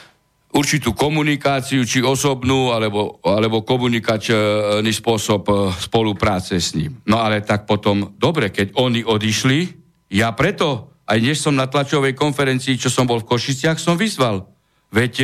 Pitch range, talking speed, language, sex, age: 130-215 Hz, 140 wpm, Slovak, male, 60-79